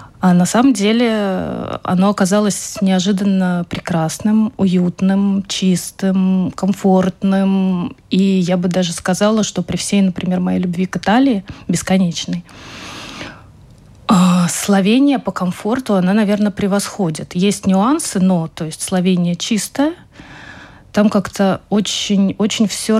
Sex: female